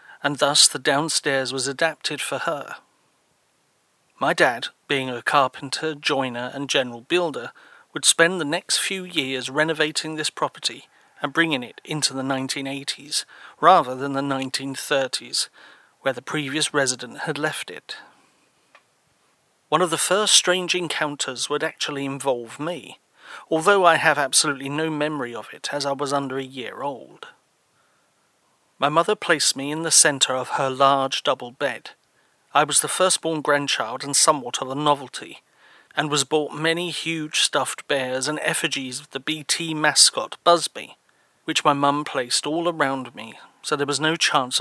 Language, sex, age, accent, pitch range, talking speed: English, male, 40-59, British, 135-160 Hz, 155 wpm